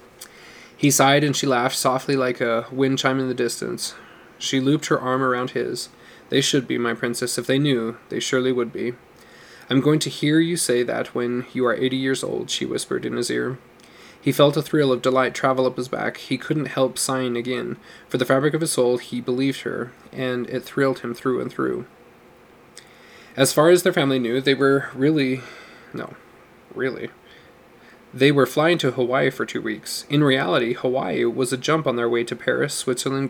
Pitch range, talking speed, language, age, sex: 125-140 Hz, 200 wpm, English, 20-39, male